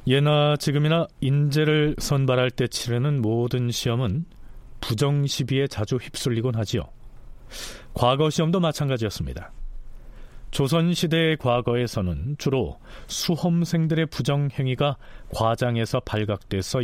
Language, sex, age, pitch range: Korean, male, 40-59, 110-150 Hz